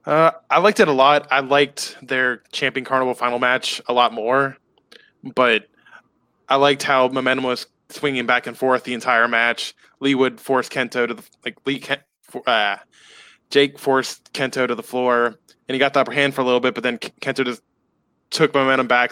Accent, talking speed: American, 190 wpm